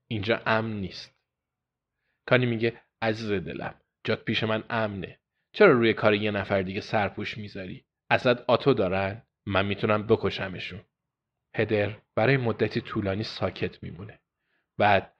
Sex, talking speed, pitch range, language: male, 125 wpm, 100-125 Hz, Persian